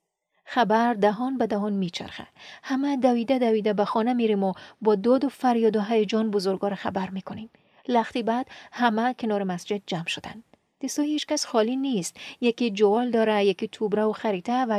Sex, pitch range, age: female, 205-255 Hz, 30-49